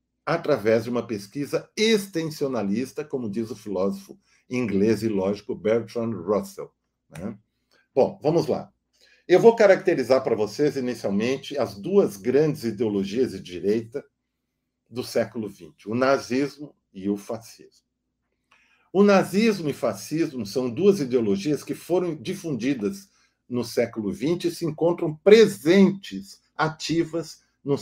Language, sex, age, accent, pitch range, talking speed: Portuguese, male, 50-69, Brazilian, 120-185 Hz, 125 wpm